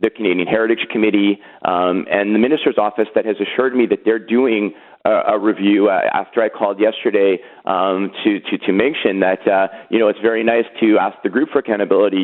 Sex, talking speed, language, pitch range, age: male, 205 wpm, English, 105-125 Hz, 30-49